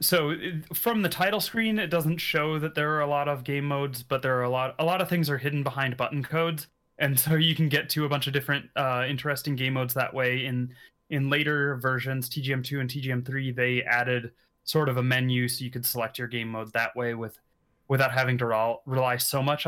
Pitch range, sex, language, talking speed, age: 125-155 Hz, male, English, 230 wpm, 30-49